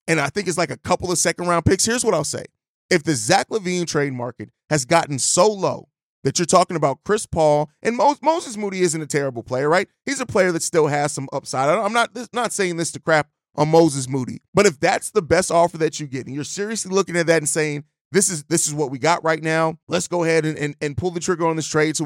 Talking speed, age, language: 260 wpm, 30-49, English